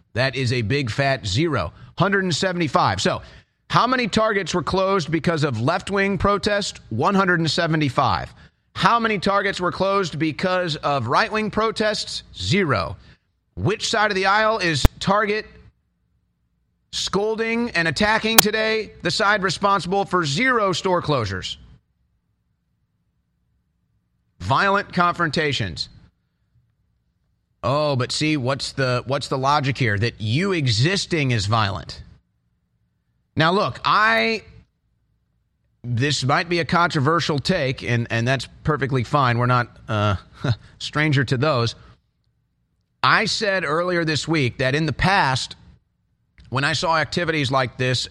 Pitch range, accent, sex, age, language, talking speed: 125-185 Hz, American, male, 40-59, English, 120 wpm